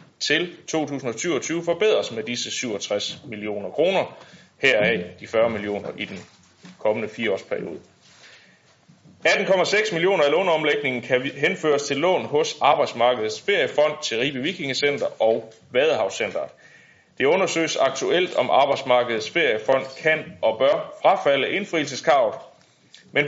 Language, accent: Danish, native